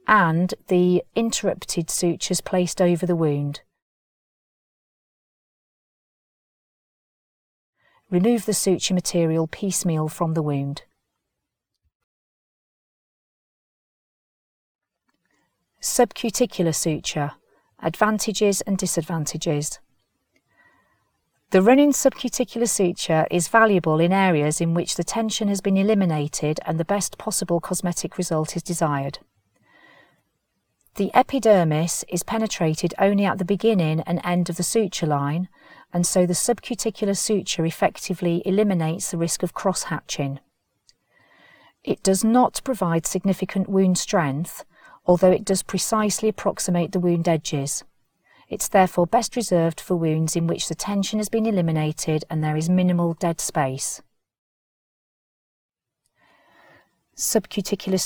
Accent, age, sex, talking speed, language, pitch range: British, 40-59, female, 110 wpm, English, 165-200 Hz